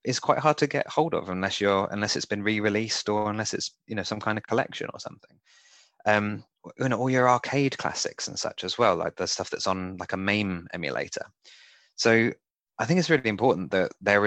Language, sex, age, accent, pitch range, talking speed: English, male, 20-39, British, 95-120 Hz, 220 wpm